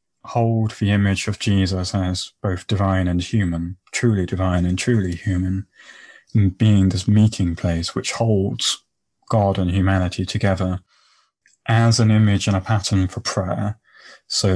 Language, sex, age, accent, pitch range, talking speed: English, male, 30-49, British, 95-110 Hz, 145 wpm